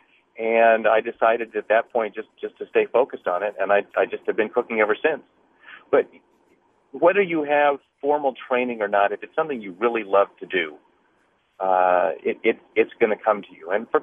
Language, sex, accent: English, male, American